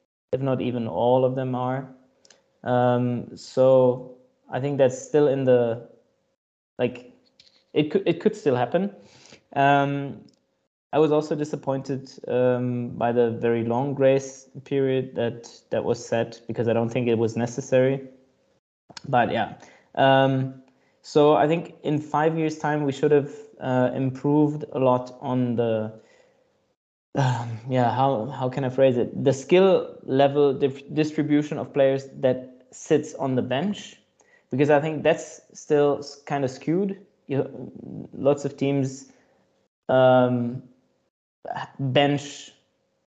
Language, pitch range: English, 125-145 Hz